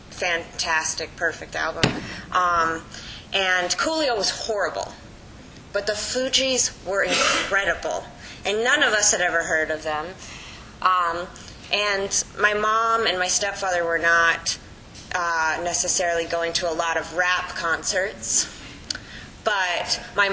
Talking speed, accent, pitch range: 125 wpm, American, 165-200 Hz